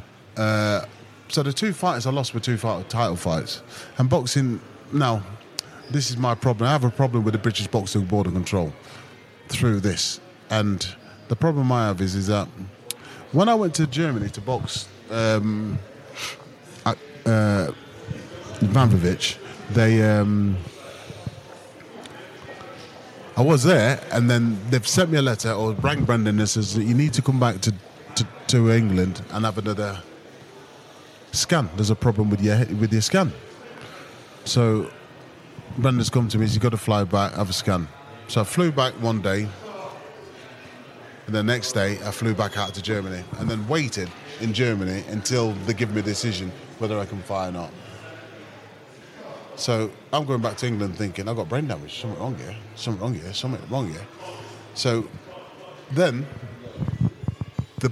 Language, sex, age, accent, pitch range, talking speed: English, male, 30-49, British, 105-130 Hz, 160 wpm